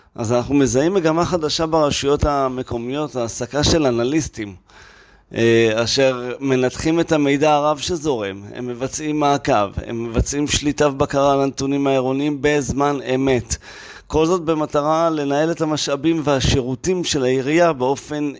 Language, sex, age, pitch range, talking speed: Hebrew, male, 30-49, 120-150 Hz, 125 wpm